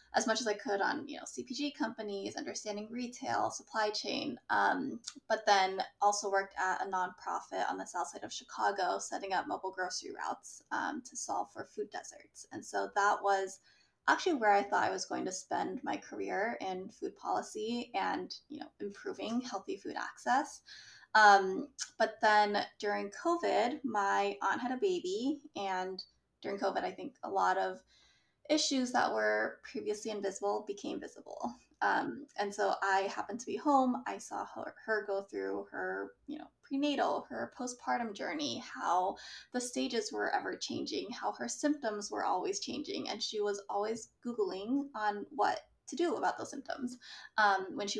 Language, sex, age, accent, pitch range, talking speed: English, female, 20-39, American, 200-295 Hz, 170 wpm